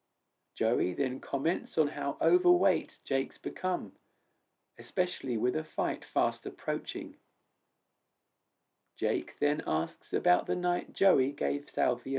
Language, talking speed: English, 115 wpm